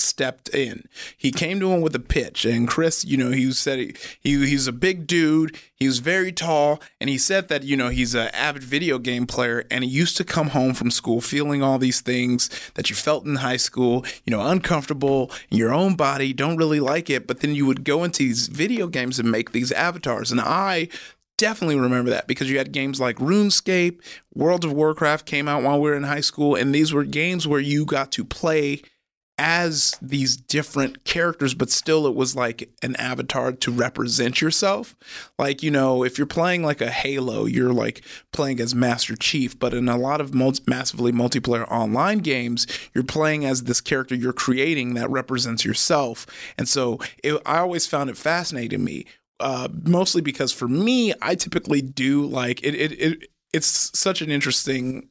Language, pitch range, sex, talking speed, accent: English, 125-155 Hz, male, 195 wpm, American